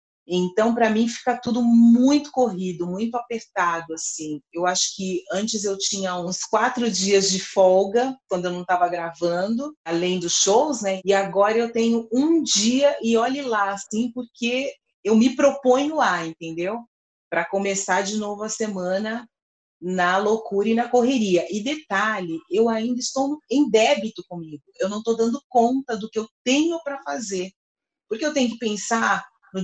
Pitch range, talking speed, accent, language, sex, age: 185-235 Hz, 165 wpm, Brazilian, Portuguese, female, 30-49